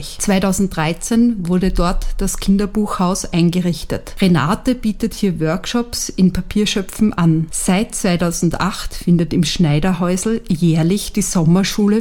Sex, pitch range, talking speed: female, 175-210 Hz, 105 wpm